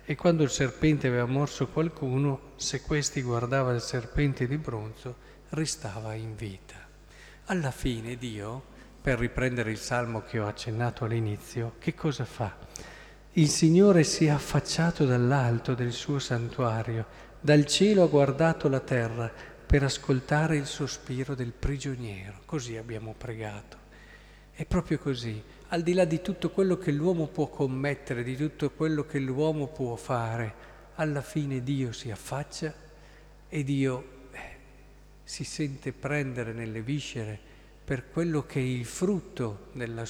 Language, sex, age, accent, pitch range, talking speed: Italian, male, 50-69, native, 120-150 Hz, 140 wpm